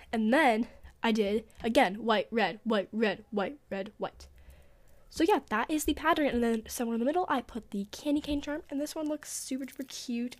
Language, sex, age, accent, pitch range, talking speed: English, female, 10-29, American, 225-275 Hz, 215 wpm